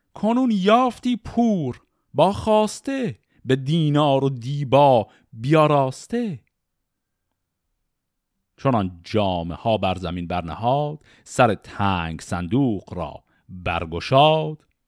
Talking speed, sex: 85 wpm, male